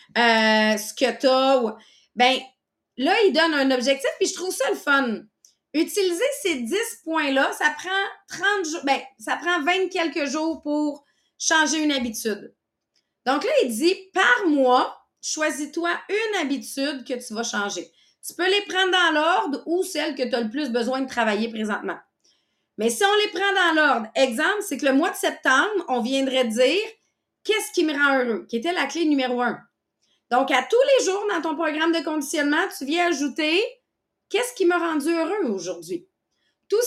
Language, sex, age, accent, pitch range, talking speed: English, female, 30-49, Canadian, 245-345 Hz, 185 wpm